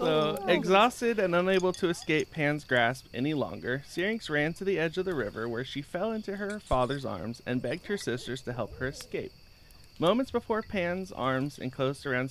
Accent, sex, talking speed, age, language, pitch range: American, male, 190 wpm, 30-49, English, 125-170 Hz